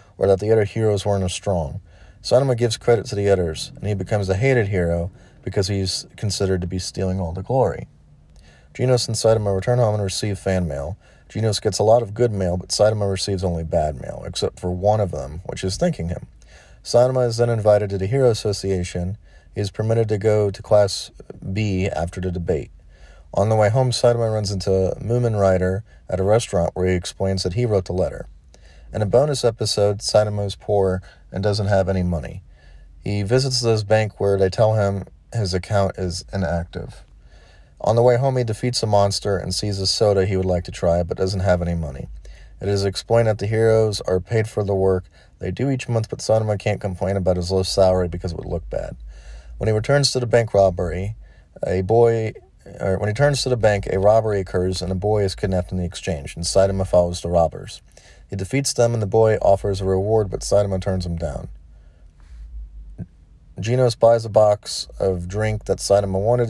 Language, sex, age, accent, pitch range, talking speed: English, male, 30-49, American, 90-110 Hz, 205 wpm